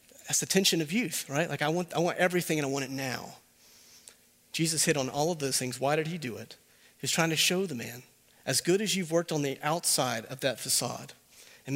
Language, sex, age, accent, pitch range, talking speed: English, male, 40-59, American, 135-170 Hz, 245 wpm